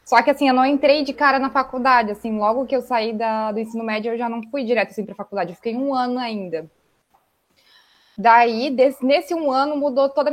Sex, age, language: female, 20-39, Portuguese